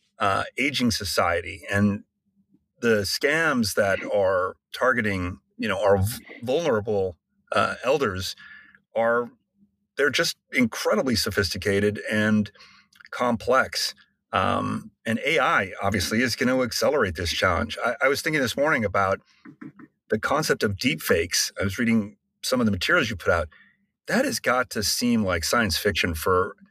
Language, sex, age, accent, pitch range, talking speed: English, male, 40-59, American, 95-120 Hz, 140 wpm